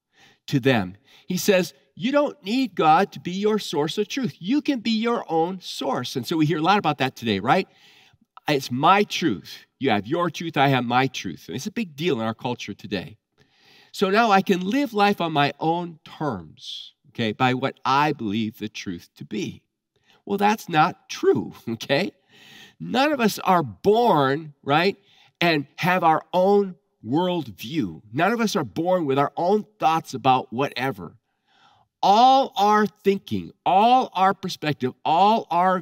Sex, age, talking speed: male, 50-69, 175 wpm